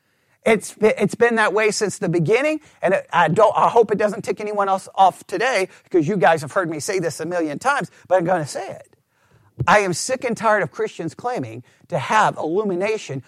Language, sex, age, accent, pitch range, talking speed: English, male, 50-69, American, 180-230 Hz, 210 wpm